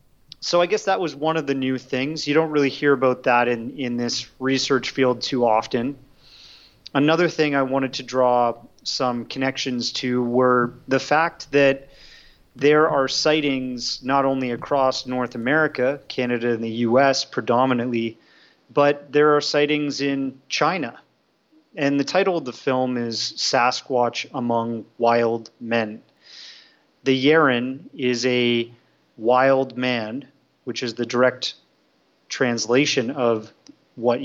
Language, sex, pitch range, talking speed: English, male, 120-140 Hz, 140 wpm